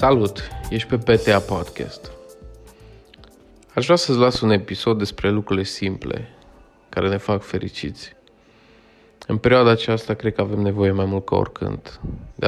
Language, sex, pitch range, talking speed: Romanian, male, 100-115 Hz, 145 wpm